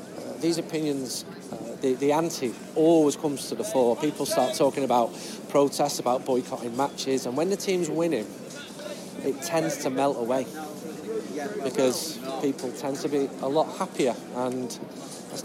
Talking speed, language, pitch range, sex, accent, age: 150 wpm, English, 135-175 Hz, male, British, 40-59